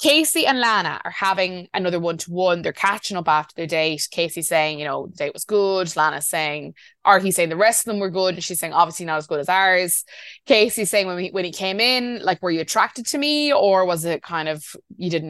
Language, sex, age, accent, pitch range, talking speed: English, female, 20-39, Irish, 160-190 Hz, 235 wpm